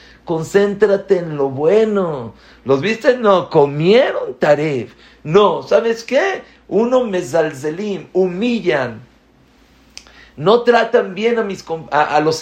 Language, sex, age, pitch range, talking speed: English, male, 50-69, 125-200 Hz, 115 wpm